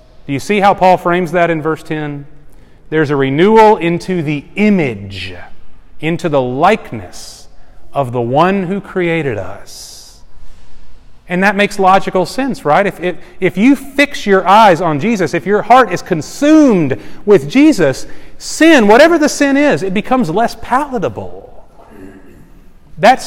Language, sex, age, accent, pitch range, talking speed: English, male, 40-59, American, 140-205 Hz, 140 wpm